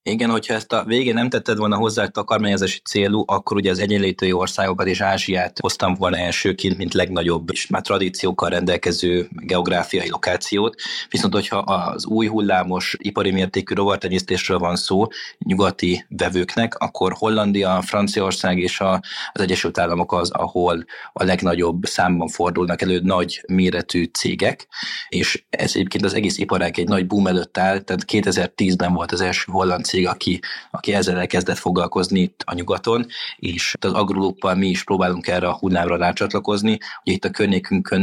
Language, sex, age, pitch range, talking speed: Hungarian, male, 20-39, 90-100 Hz, 155 wpm